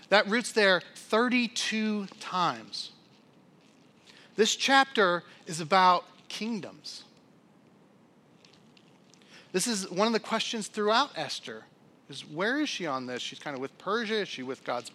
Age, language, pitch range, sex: 40-59, English, 175-225 Hz, male